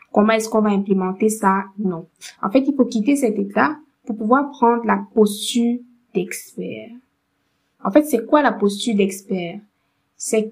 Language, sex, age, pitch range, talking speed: French, female, 20-39, 205-245 Hz, 160 wpm